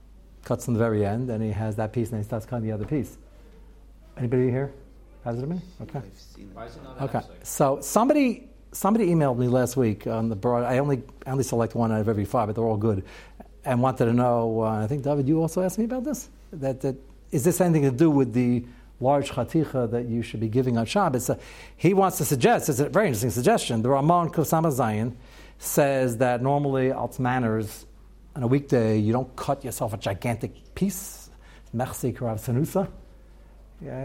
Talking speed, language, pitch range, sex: 195 wpm, English, 115-175 Hz, male